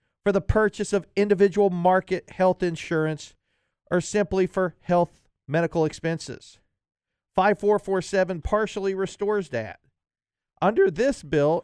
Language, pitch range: English, 145-185 Hz